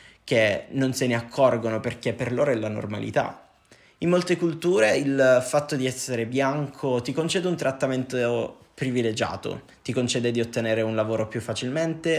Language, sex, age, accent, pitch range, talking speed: Italian, male, 20-39, native, 115-145 Hz, 160 wpm